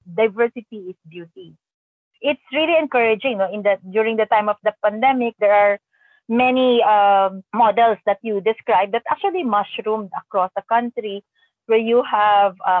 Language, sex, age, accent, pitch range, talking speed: English, female, 30-49, Filipino, 195-235 Hz, 150 wpm